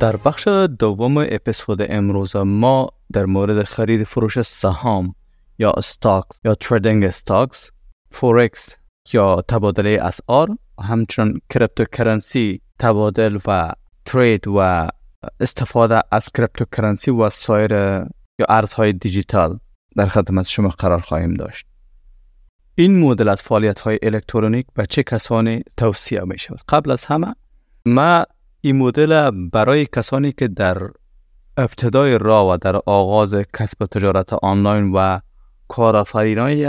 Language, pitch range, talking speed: Persian, 100-120 Hz, 120 wpm